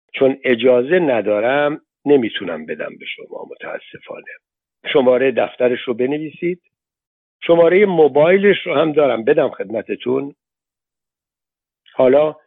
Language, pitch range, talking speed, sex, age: Persian, 120-160 Hz, 95 wpm, male, 60-79